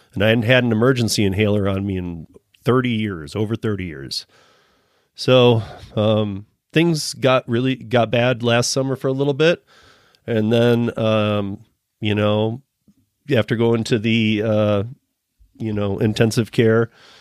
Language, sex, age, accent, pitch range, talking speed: English, male, 30-49, American, 100-125 Hz, 145 wpm